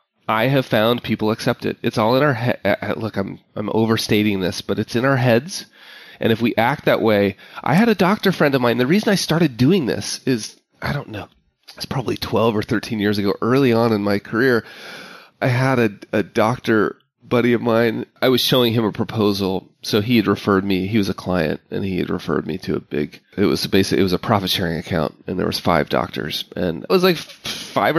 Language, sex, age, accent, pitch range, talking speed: English, male, 30-49, American, 100-125 Hz, 225 wpm